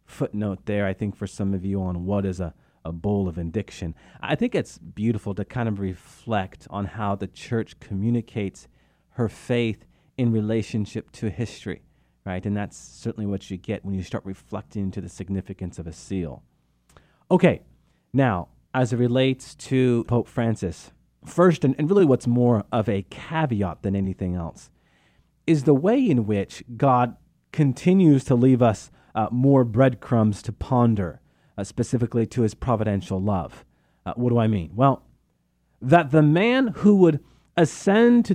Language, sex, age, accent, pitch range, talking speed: English, male, 40-59, American, 100-150 Hz, 165 wpm